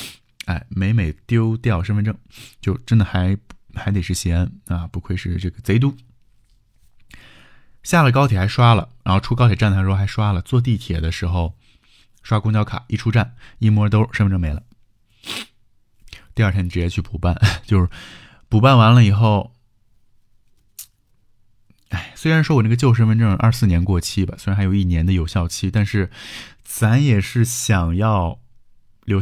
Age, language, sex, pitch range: 20-39, Chinese, male, 95-120 Hz